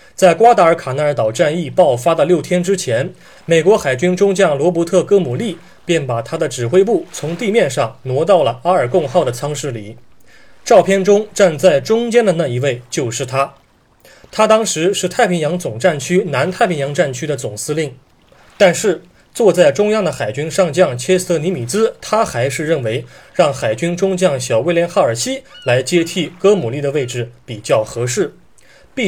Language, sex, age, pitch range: Chinese, male, 20-39, 140-190 Hz